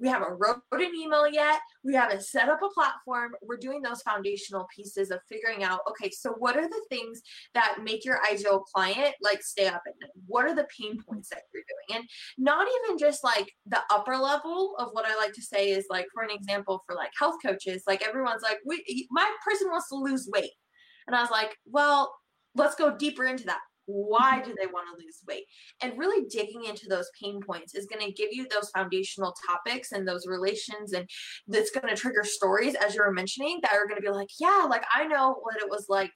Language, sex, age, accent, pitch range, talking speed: English, female, 20-39, American, 200-260 Hz, 225 wpm